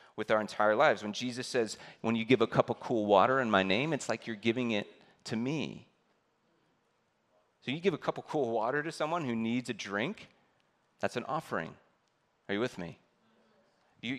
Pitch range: 100-125 Hz